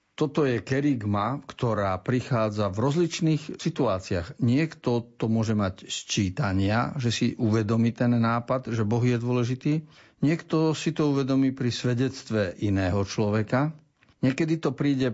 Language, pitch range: Slovak, 105-130 Hz